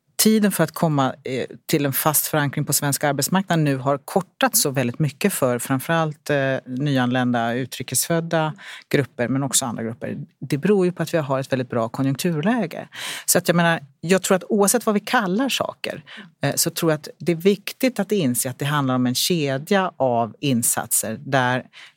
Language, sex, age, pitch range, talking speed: Swedish, female, 40-59, 130-160 Hz, 185 wpm